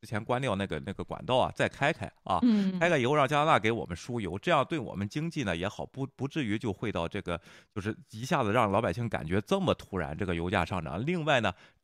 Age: 20-39